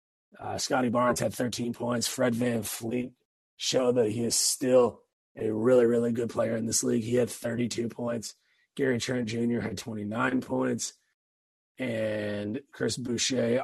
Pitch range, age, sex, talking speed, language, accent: 105-120 Hz, 30-49, male, 155 wpm, English, American